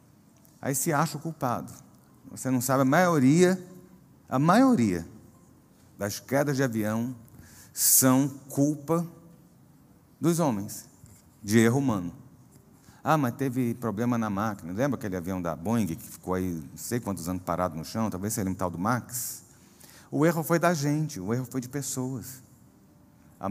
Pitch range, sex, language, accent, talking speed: 100-135 Hz, male, Portuguese, Brazilian, 155 wpm